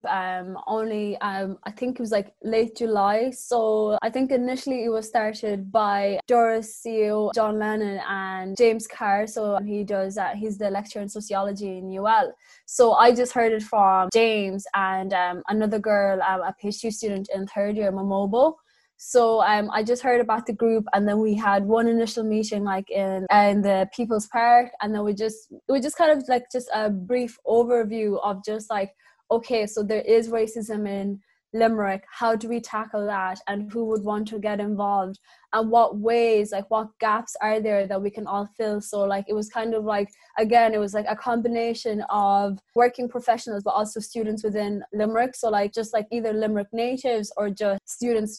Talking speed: 195 wpm